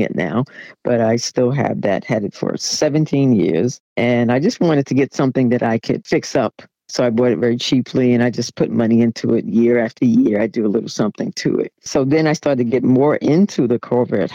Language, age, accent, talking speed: English, 50-69, American, 235 wpm